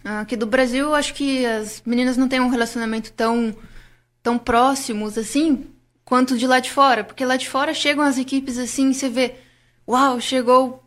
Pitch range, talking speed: 215-260 Hz, 180 wpm